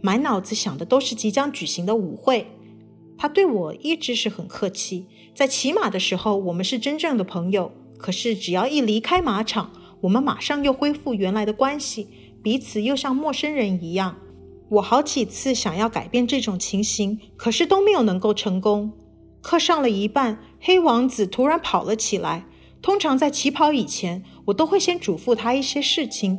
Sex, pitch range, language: female, 210-280 Hz, Chinese